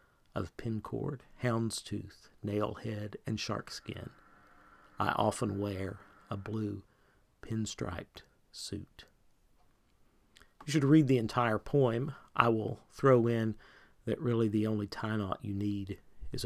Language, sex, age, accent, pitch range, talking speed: English, male, 50-69, American, 105-125 Hz, 130 wpm